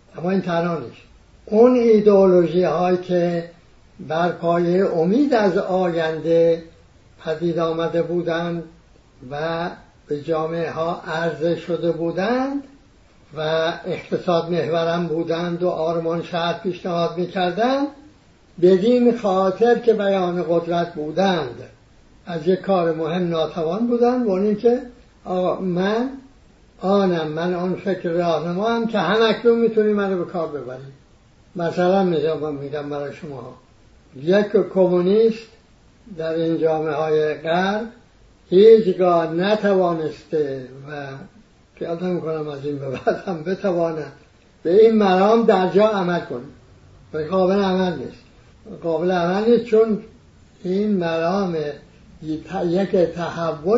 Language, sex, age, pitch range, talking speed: English, male, 60-79, 165-200 Hz, 110 wpm